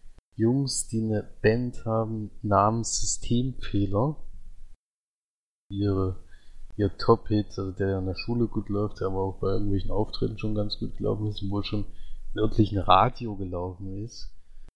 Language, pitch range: German, 95-110 Hz